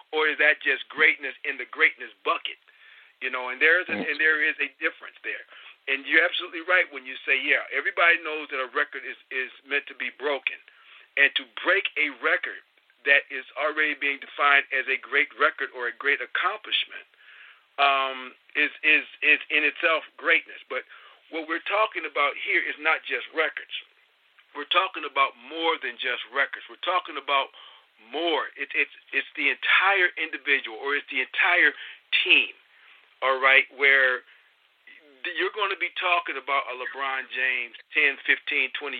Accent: American